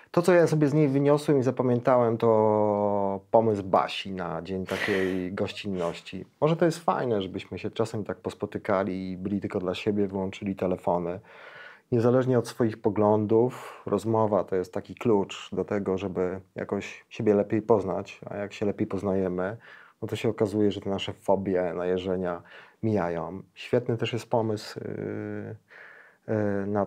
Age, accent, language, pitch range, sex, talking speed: 30-49, native, Polish, 95-115 Hz, male, 155 wpm